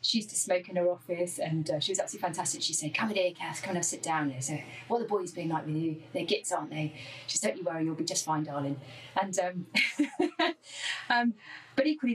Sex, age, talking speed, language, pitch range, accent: female, 30-49, 250 wpm, English, 155-200 Hz, British